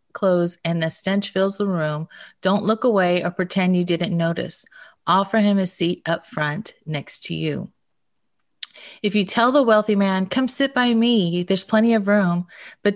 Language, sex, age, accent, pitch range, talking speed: English, female, 30-49, American, 170-210 Hz, 180 wpm